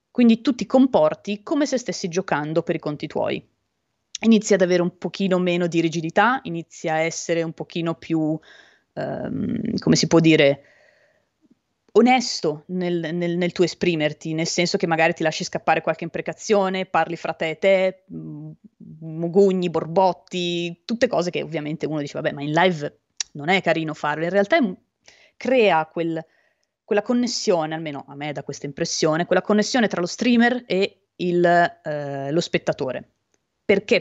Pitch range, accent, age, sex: 160-195 Hz, native, 20-39, female